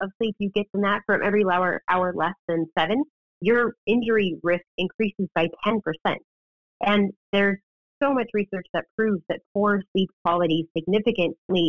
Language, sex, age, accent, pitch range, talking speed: English, female, 30-49, American, 170-205 Hz, 160 wpm